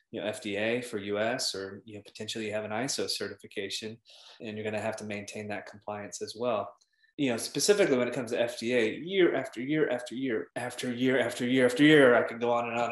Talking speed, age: 230 wpm, 20-39